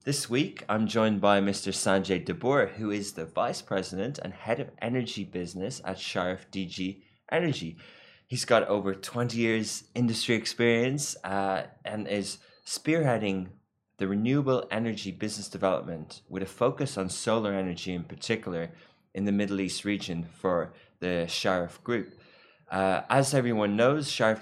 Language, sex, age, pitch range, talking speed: English, male, 20-39, 95-120 Hz, 145 wpm